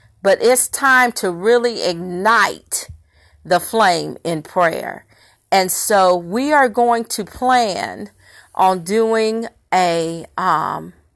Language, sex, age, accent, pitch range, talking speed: English, female, 40-59, American, 180-235 Hz, 115 wpm